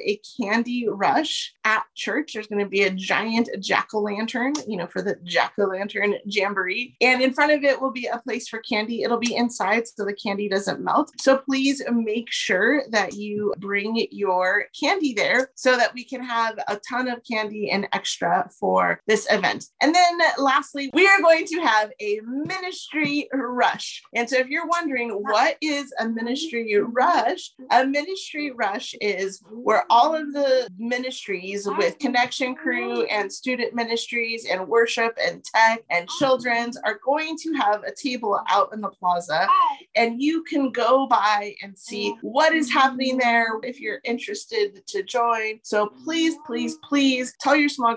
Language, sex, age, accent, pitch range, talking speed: English, female, 30-49, American, 210-275 Hz, 170 wpm